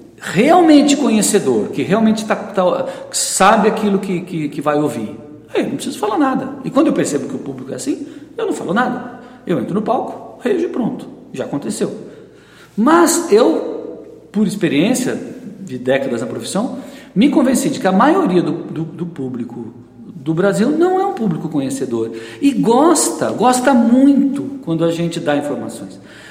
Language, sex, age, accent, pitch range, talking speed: Portuguese, male, 50-69, Brazilian, 175-265 Hz, 170 wpm